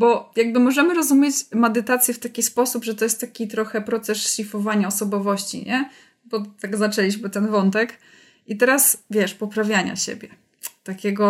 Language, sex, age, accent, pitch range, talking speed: Polish, female, 20-39, native, 205-240 Hz, 150 wpm